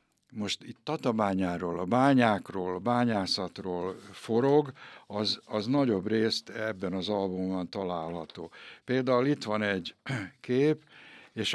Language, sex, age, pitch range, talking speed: Hungarian, male, 60-79, 100-125 Hz, 115 wpm